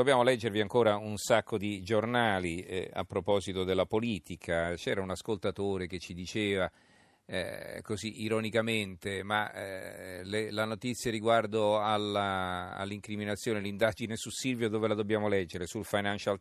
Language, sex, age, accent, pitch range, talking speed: Italian, male, 40-59, native, 95-110 Hz, 130 wpm